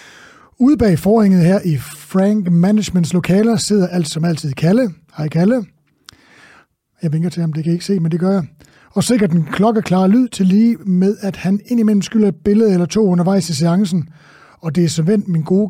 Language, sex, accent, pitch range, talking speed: English, male, Danish, 160-205 Hz, 205 wpm